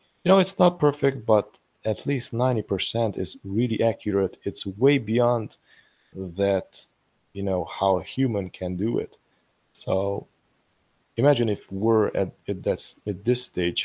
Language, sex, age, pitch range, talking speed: English, male, 20-39, 95-110 Hz, 150 wpm